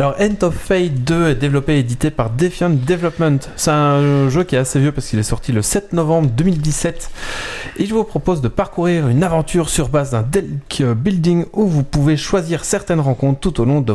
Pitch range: 120-170 Hz